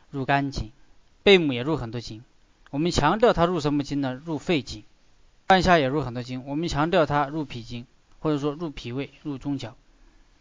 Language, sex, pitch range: Chinese, male, 135-170 Hz